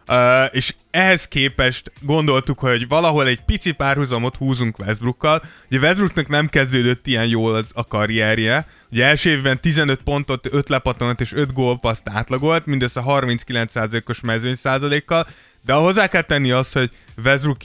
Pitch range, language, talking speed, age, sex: 115-140 Hz, Hungarian, 145 wpm, 20-39, male